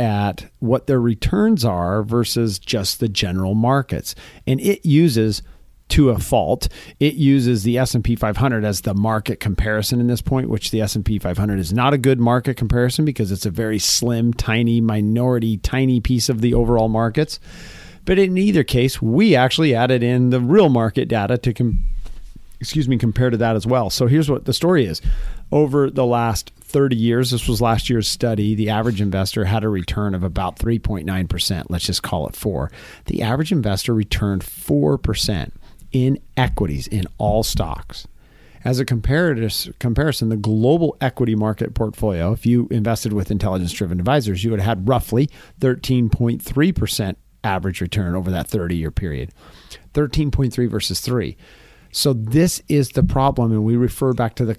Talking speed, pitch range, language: 165 wpm, 105-130 Hz, English